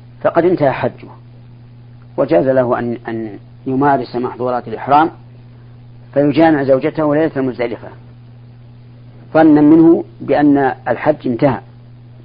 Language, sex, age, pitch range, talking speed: Arabic, female, 50-69, 120-135 Hz, 95 wpm